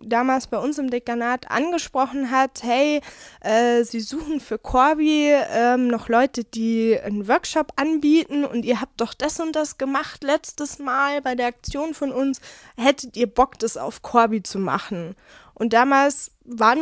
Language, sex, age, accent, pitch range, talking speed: German, female, 20-39, German, 230-290 Hz, 160 wpm